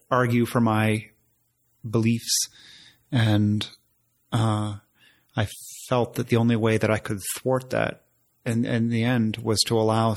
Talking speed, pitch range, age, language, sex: 140 wpm, 105-115 Hz, 30-49, English, male